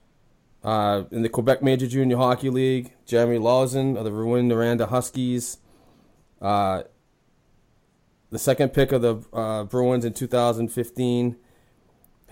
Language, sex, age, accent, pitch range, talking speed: English, male, 30-49, American, 105-125 Hz, 120 wpm